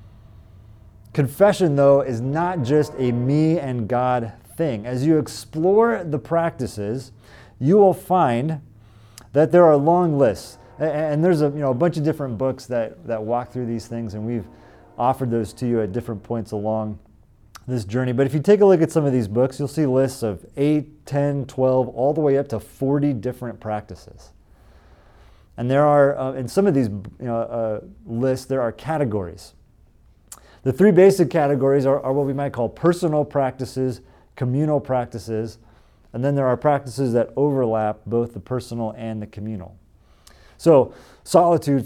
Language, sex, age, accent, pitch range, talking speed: English, male, 30-49, American, 110-140 Hz, 175 wpm